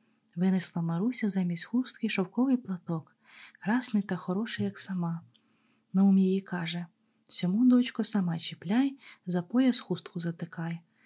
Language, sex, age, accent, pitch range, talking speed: Ukrainian, female, 20-39, native, 180-220 Hz, 120 wpm